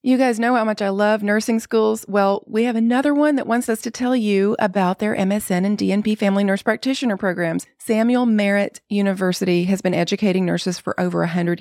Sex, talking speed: female, 200 wpm